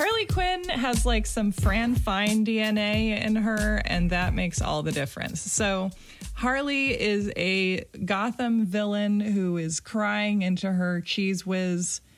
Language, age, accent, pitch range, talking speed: English, 20-39, American, 165-200 Hz, 145 wpm